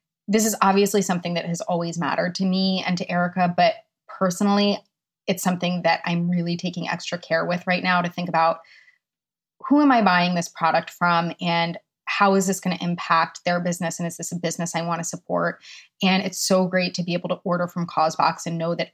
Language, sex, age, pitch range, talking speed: English, female, 20-39, 170-200 Hz, 215 wpm